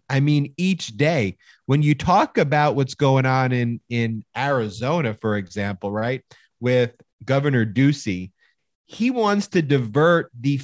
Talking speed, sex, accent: 140 wpm, male, American